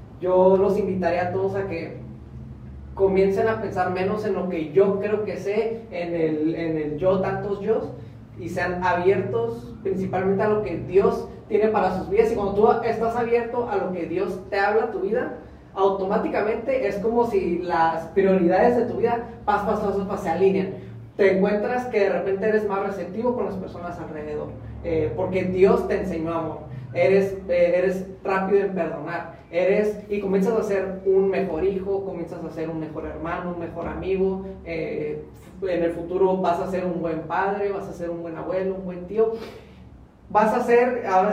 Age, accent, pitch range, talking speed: 30-49, Mexican, 170-205 Hz, 185 wpm